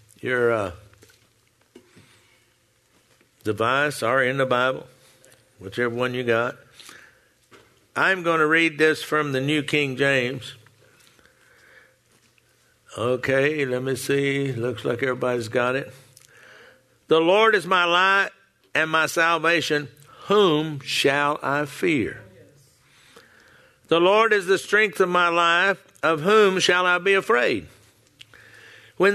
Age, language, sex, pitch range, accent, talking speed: 60-79, English, male, 140-200 Hz, American, 115 wpm